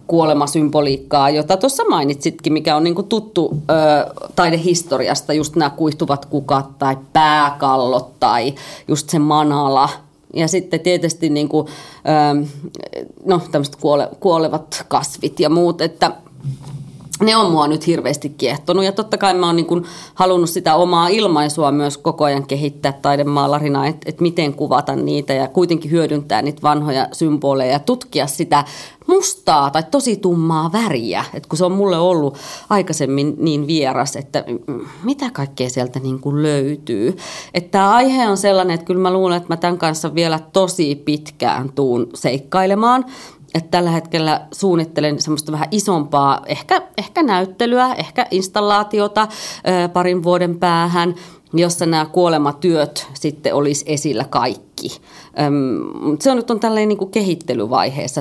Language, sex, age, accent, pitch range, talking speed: Finnish, female, 30-49, native, 145-185 Hz, 135 wpm